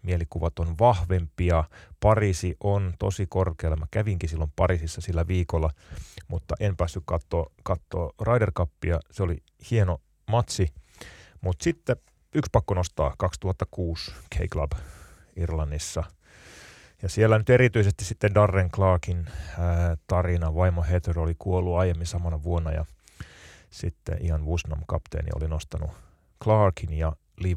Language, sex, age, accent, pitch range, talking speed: Finnish, male, 30-49, native, 80-100 Hz, 125 wpm